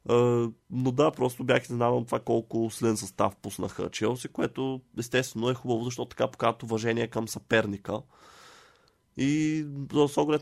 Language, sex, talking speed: Bulgarian, male, 145 wpm